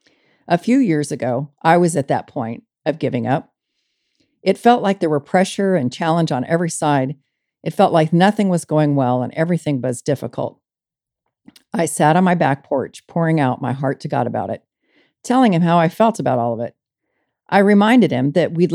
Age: 50-69